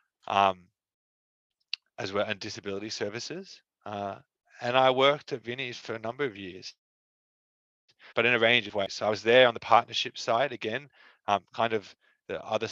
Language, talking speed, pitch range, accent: English, 175 wpm, 100-120 Hz, Australian